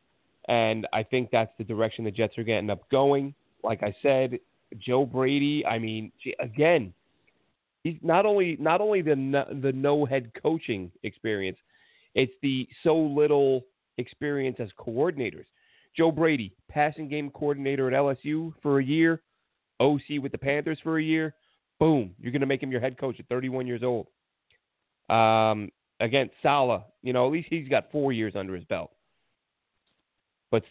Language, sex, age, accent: English, male, 30-49, American